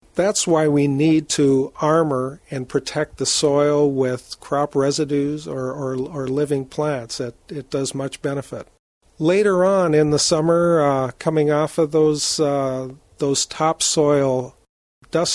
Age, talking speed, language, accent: 50-69, 145 wpm, English, American